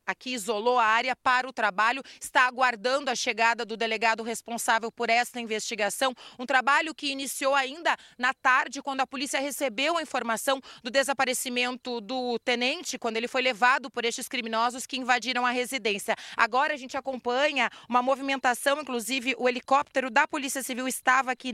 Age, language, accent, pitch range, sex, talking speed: 30-49, Portuguese, Brazilian, 240-275 Hz, female, 165 wpm